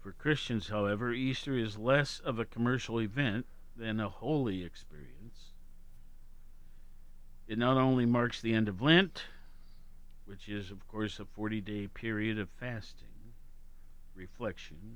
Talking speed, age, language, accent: 130 wpm, 50-69, English, American